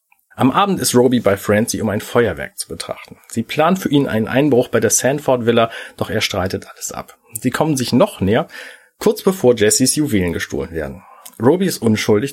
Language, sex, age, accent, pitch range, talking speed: German, male, 40-59, German, 105-150 Hz, 190 wpm